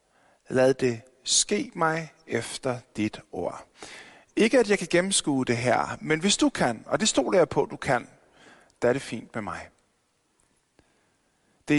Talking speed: 165 wpm